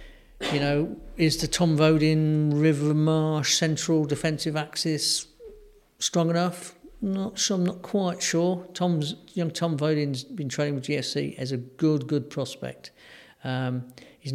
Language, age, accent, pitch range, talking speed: English, 50-69, British, 130-155 Hz, 145 wpm